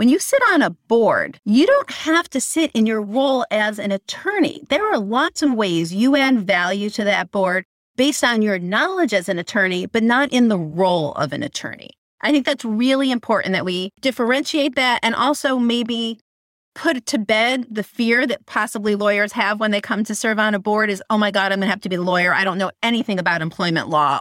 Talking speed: 225 wpm